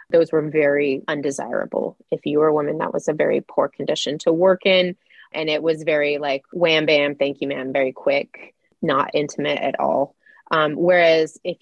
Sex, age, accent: female, 20-39, American